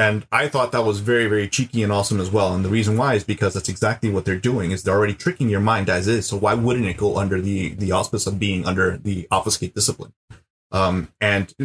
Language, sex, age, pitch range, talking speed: English, male, 30-49, 95-120 Hz, 245 wpm